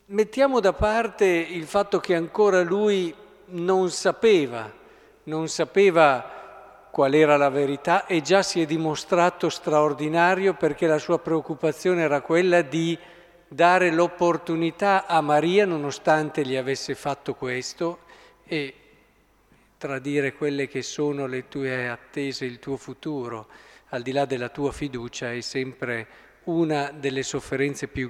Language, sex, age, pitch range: Italian, male, 50-69, 135-180 Hz